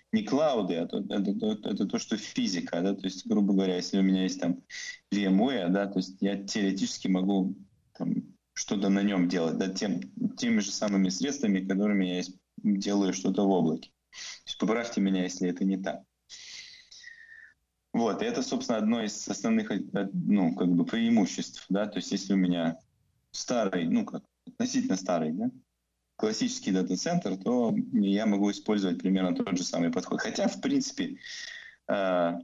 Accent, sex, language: native, male, Russian